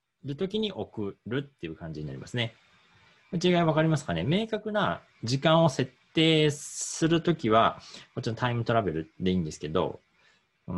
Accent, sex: native, male